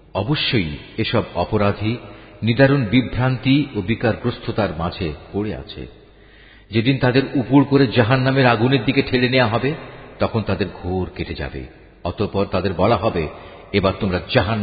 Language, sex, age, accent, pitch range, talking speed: Bengali, male, 50-69, native, 95-135 Hz, 55 wpm